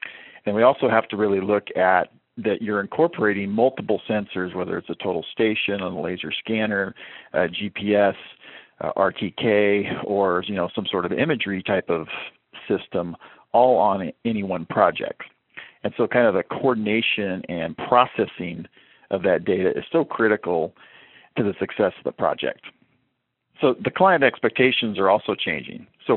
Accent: American